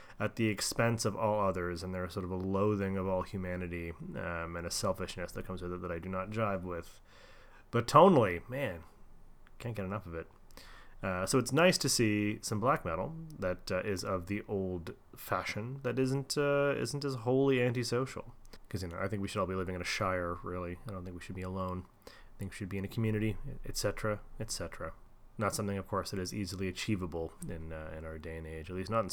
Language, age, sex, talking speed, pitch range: English, 30-49, male, 225 wpm, 90-120 Hz